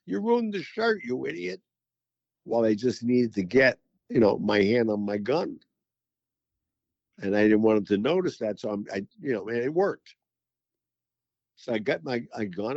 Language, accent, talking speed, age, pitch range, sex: English, American, 195 wpm, 60-79, 105-155 Hz, male